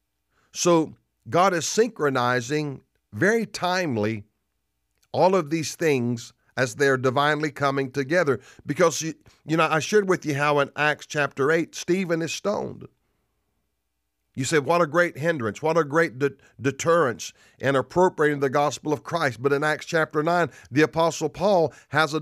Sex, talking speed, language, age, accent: male, 155 wpm, English, 50-69, American